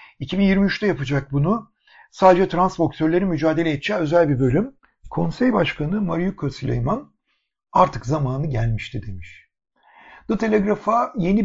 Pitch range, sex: 140-195 Hz, male